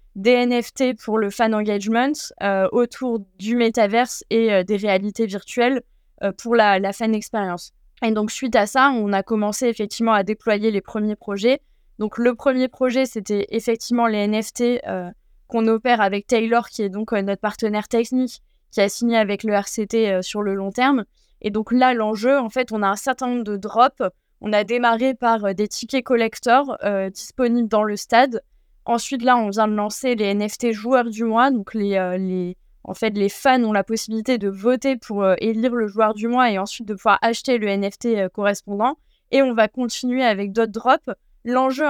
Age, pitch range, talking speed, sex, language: 20-39, 210-245 Hz, 200 wpm, female, French